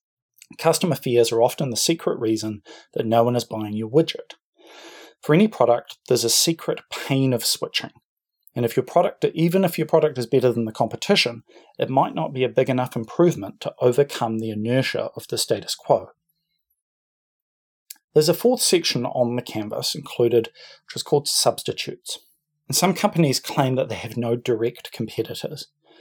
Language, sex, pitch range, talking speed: English, male, 115-155 Hz, 170 wpm